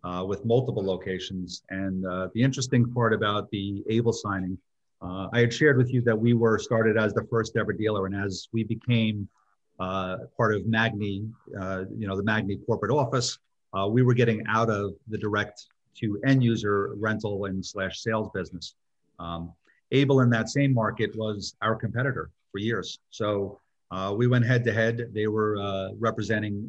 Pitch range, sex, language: 95-115 Hz, male, English